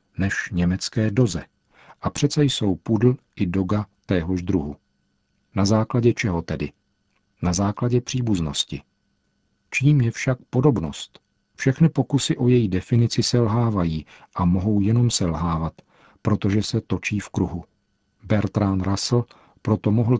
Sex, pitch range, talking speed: male, 95-120 Hz, 120 wpm